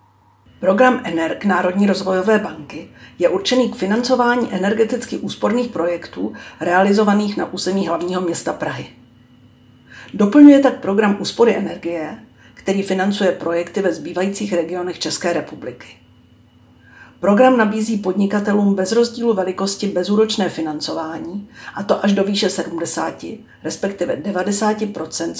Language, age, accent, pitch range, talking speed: Czech, 50-69, native, 170-205 Hz, 110 wpm